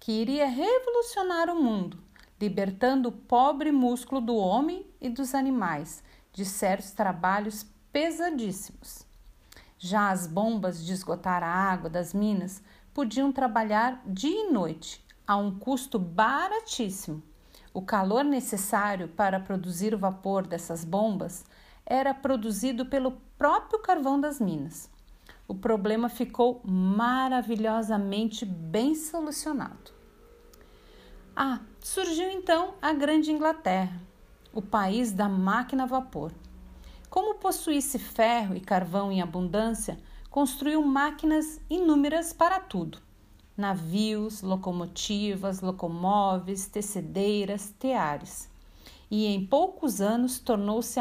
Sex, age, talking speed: female, 50-69, 105 wpm